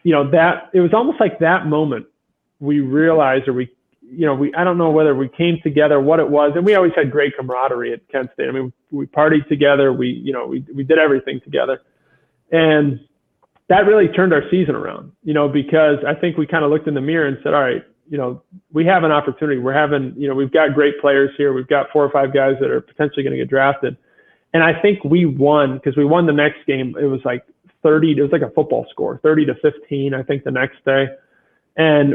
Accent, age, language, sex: American, 30-49, English, male